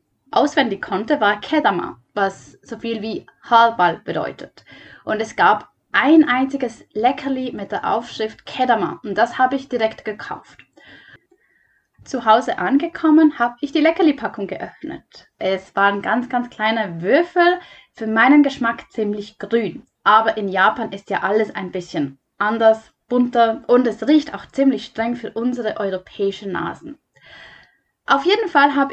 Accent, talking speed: German, 145 wpm